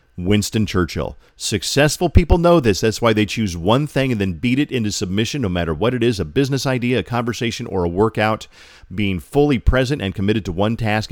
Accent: American